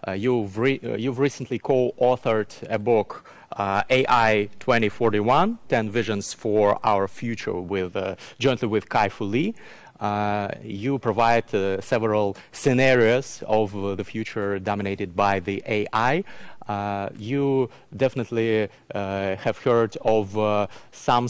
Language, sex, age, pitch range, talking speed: English, male, 30-49, 105-125 Hz, 130 wpm